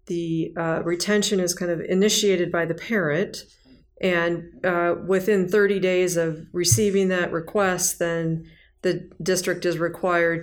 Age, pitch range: 40-59, 160-180 Hz